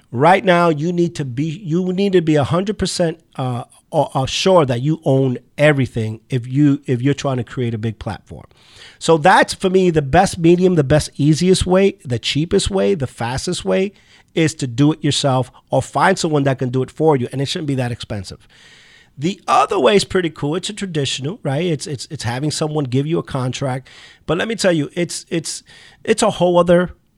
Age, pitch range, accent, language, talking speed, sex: 40-59, 135-175 Hz, American, English, 210 wpm, male